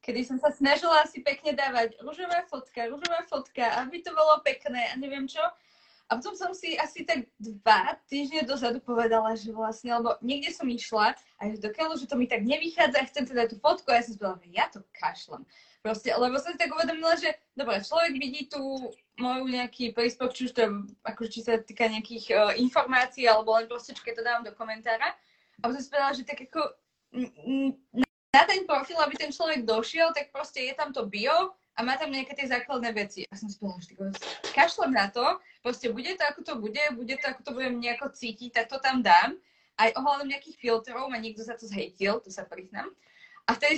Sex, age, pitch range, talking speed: female, 20-39, 230-305 Hz, 205 wpm